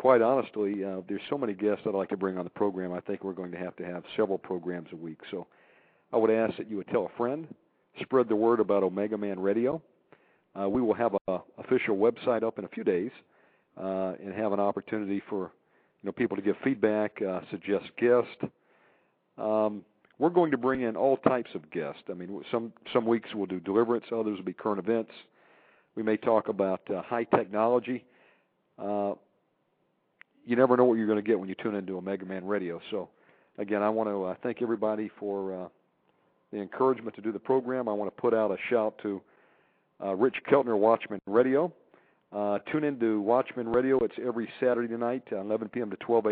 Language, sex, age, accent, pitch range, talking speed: English, male, 50-69, American, 100-115 Hz, 210 wpm